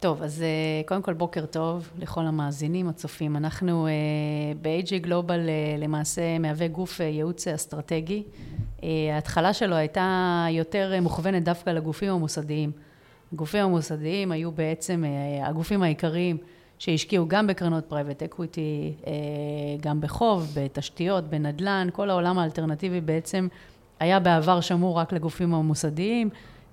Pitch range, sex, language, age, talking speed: 155-185 Hz, female, Hebrew, 40-59, 110 wpm